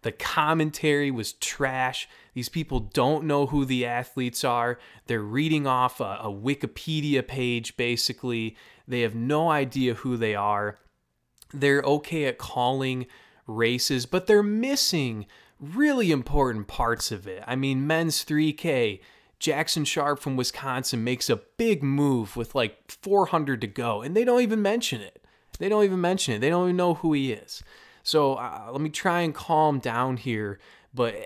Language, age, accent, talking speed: English, 20-39, American, 165 wpm